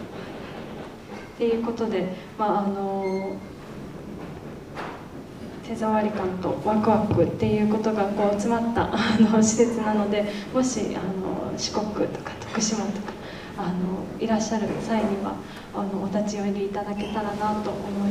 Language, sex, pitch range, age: Japanese, female, 200-235 Hz, 20-39